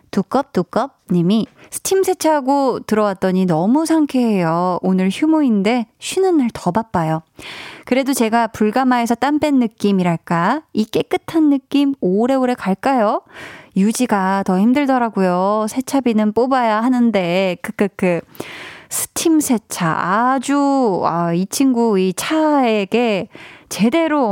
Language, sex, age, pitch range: Korean, female, 20-39, 195-280 Hz